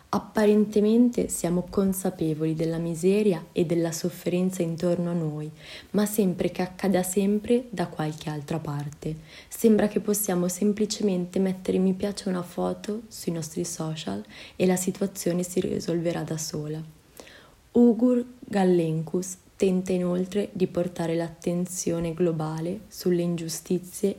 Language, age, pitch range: Italian, 20-39, 165-195 Hz